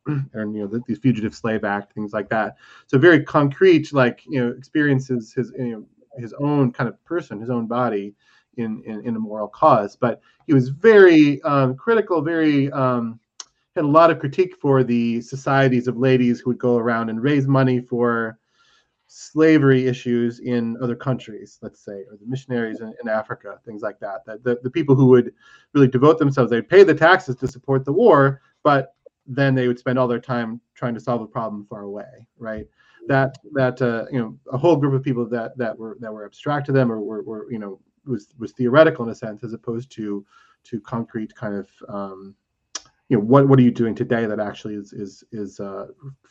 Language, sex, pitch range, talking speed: English, male, 110-140 Hz, 210 wpm